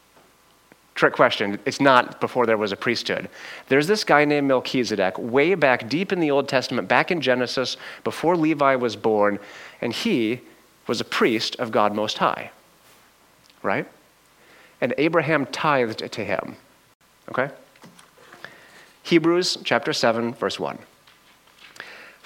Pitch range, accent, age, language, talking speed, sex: 110-145 Hz, American, 30-49, English, 130 wpm, male